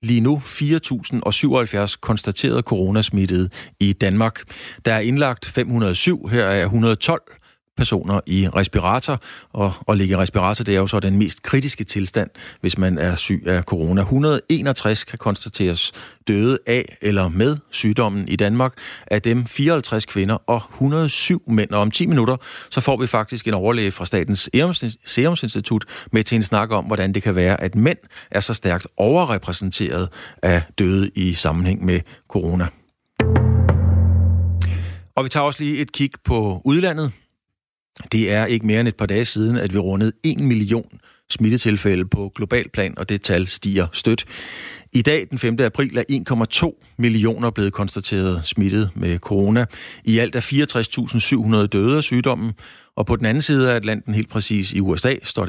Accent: native